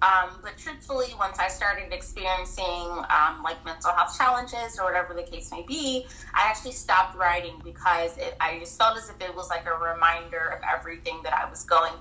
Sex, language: female, English